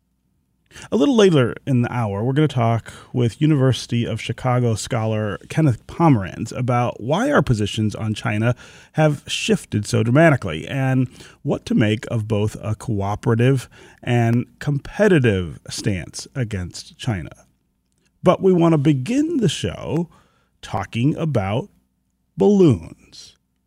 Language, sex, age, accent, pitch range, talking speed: English, male, 30-49, American, 110-150 Hz, 125 wpm